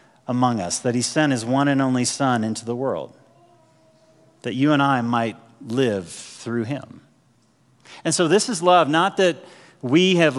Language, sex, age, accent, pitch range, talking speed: English, male, 40-59, American, 120-145 Hz, 175 wpm